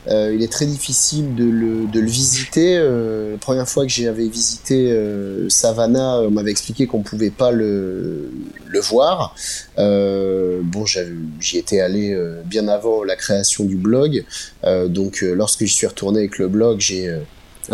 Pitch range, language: 100-125 Hz, French